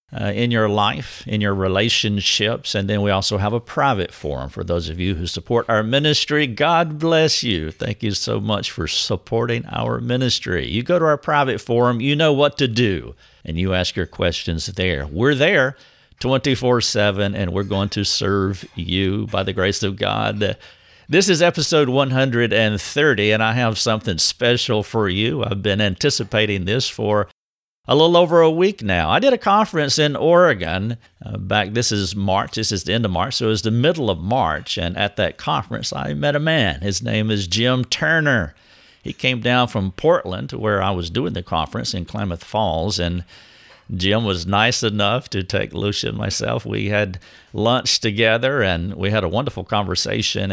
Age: 50-69